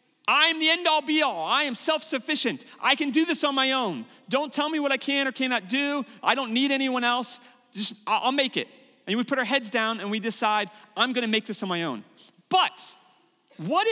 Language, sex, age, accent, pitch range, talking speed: English, male, 40-59, American, 235-300 Hz, 215 wpm